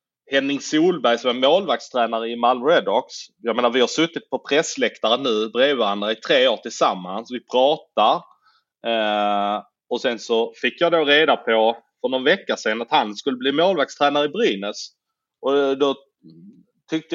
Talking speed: 160 wpm